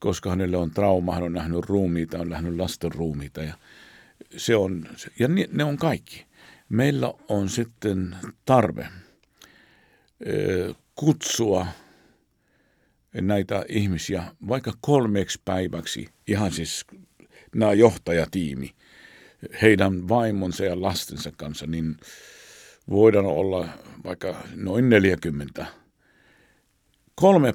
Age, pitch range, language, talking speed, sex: 60-79, 90-110 Hz, Finnish, 100 wpm, male